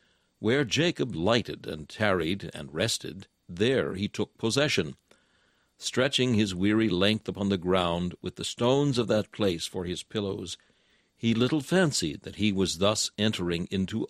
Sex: male